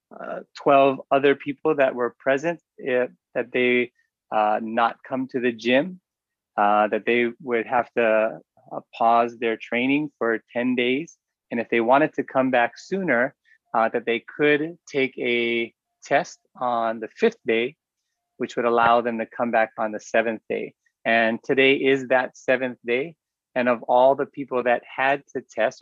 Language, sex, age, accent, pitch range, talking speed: English, male, 30-49, American, 115-135 Hz, 170 wpm